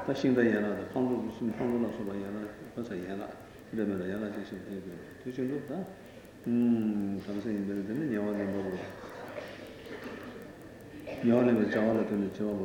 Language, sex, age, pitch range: Italian, male, 60-79, 110-115 Hz